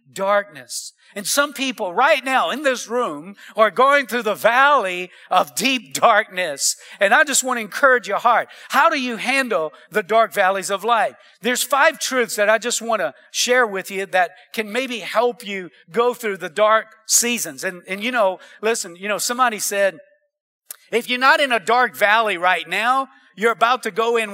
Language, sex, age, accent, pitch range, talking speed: English, male, 50-69, American, 205-265 Hz, 190 wpm